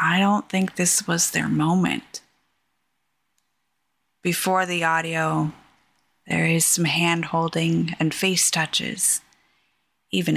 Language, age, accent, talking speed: English, 20-39, American, 105 wpm